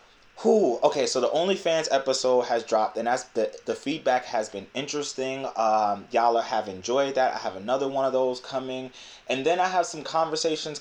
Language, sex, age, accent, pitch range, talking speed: English, male, 20-39, American, 115-140 Hz, 195 wpm